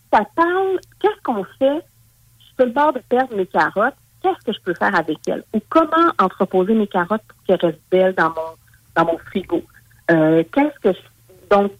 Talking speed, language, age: 205 wpm, English, 50-69